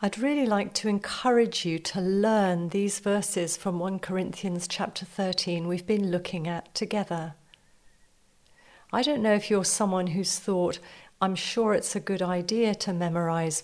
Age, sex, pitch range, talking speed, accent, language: 40-59, female, 175-215 Hz, 160 wpm, British, English